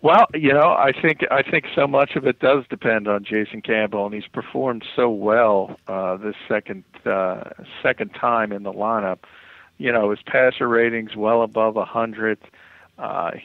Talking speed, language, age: 175 wpm, English, 50-69